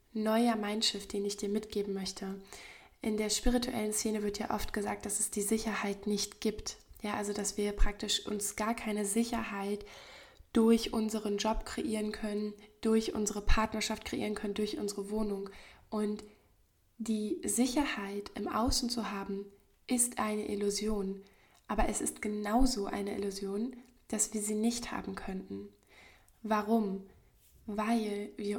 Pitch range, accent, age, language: 205-235 Hz, German, 20-39, German